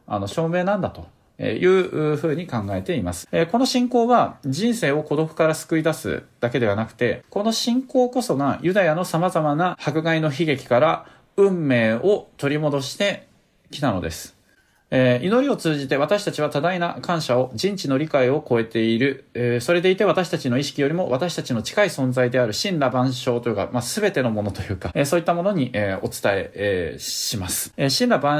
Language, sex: Japanese, male